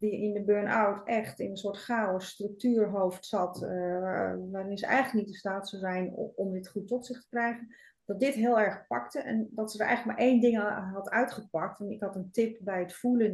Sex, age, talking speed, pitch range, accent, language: female, 30-49, 220 wpm, 195-235 Hz, Dutch, Dutch